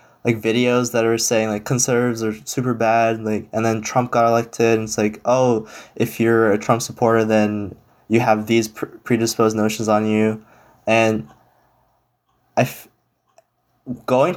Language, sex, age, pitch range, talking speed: English, male, 20-39, 110-125 Hz, 145 wpm